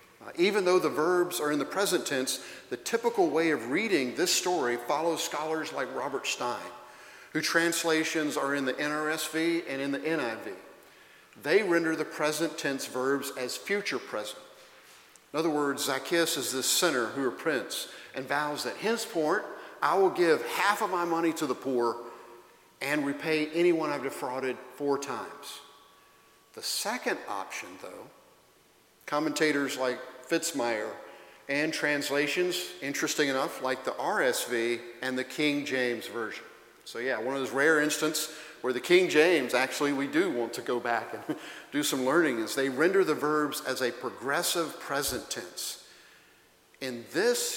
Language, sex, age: English, male, 50-69